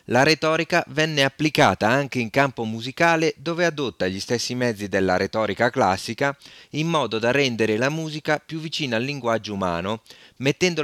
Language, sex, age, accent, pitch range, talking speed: Italian, male, 30-49, native, 105-145 Hz, 155 wpm